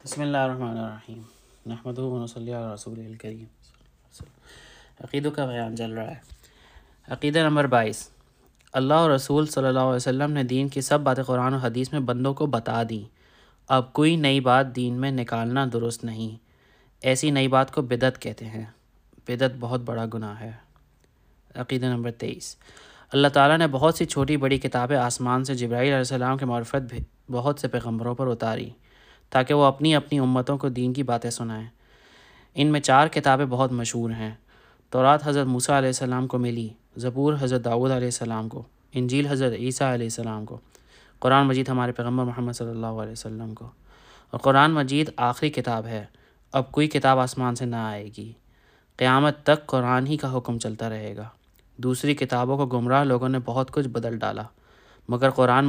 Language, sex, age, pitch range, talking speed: Urdu, male, 20-39, 115-135 Hz, 170 wpm